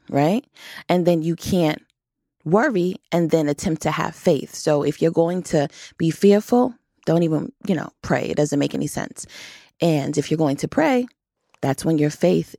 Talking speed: 185 wpm